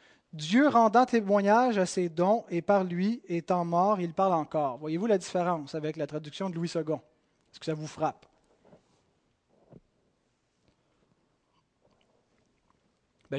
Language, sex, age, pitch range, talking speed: French, male, 30-49, 170-220 Hz, 130 wpm